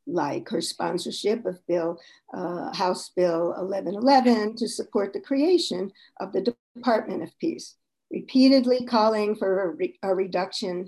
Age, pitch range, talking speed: 50-69, 185-240 Hz, 120 wpm